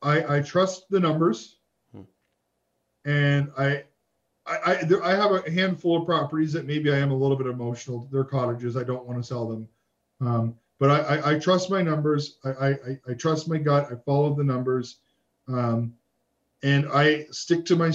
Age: 40-59